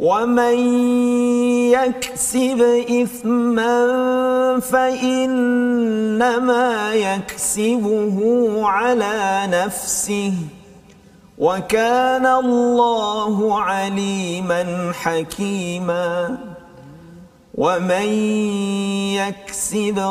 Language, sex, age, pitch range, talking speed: Malayalam, male, 50-69, 195-260 Hz, 35 wpm